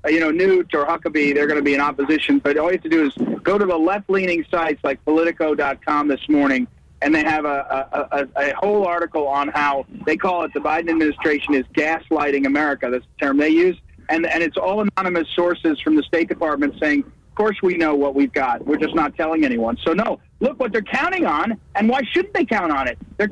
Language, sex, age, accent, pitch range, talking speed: English, male, 40-59, American, 165-275 Hz, 225 wpm